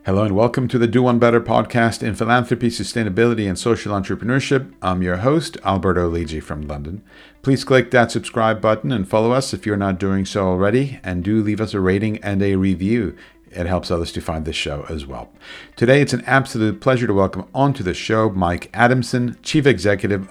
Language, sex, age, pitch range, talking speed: English, male, 50-69, 95-120 Hz, 200 wpm